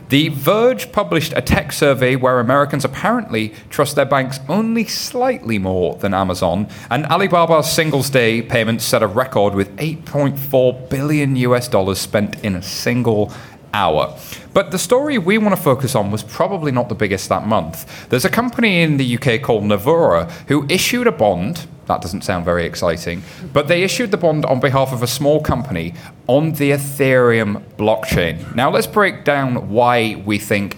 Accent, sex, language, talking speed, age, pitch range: British, male, English, 175 wpm, 30-49, 110-155 Hz